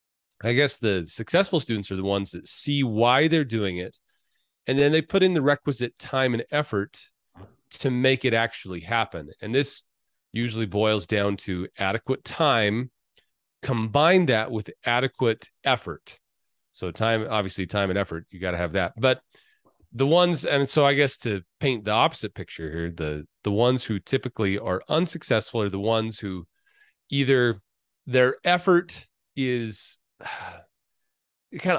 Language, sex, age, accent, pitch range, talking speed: English, male, 30-49, American, 100-140 Hz, 155 wpm